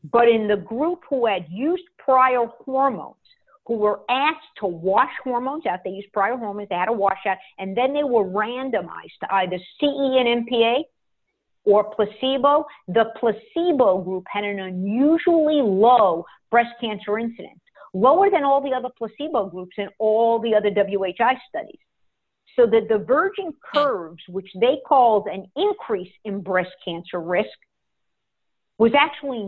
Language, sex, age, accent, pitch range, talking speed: English, female, 50-69, American, 190-260 Hz, 155 wpm